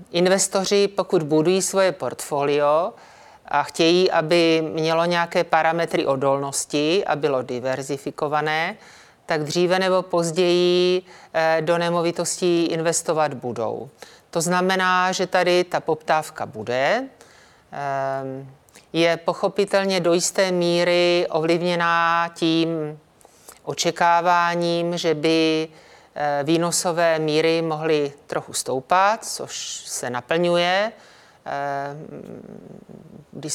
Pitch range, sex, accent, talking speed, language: 155-180 Hz, male, native, 90 wpm, Czech